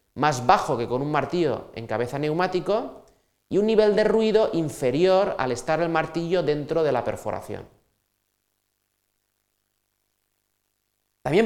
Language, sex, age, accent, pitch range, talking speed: Spanish, male, 30-49, Spanish, 115-160 Hz, 125 wpm